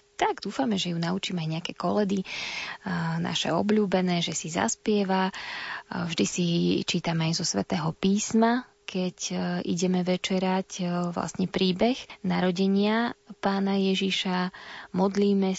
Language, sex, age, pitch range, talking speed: Slovak, female, 20-39, 170-195 Hz, 110 wpm